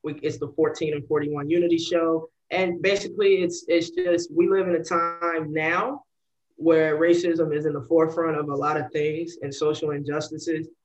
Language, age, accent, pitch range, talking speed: English, 20-39, American, 150-170 Hz, 175 wpm